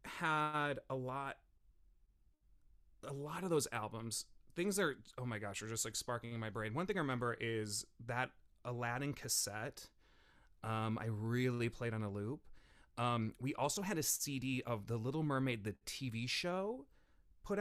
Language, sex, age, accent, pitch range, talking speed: English, male, 30-49, American, 115-160 Hz, 170 wpm